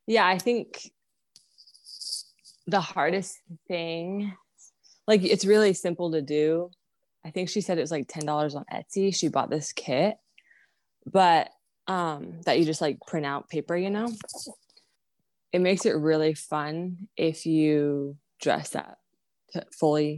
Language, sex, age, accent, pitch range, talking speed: English, female, 20-39, American, 155-190 Hz, 140 wpm